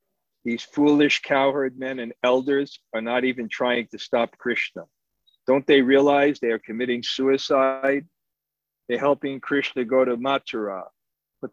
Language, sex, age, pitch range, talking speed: English, male, 50-69, 115-135 Hz, 140 wpm